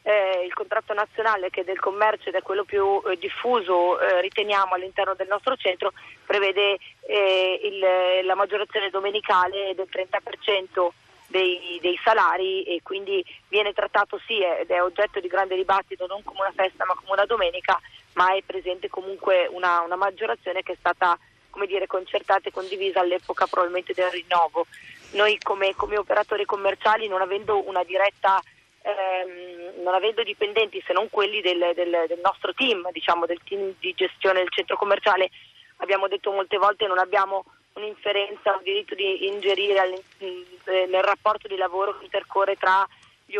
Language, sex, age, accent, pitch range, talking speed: Italian, female, 30-49, native, 185-210 Hz, 165 wpm